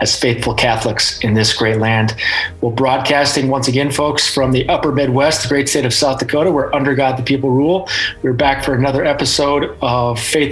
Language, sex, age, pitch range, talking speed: English, male, 30-49, 130-150 Hz, 200 wpm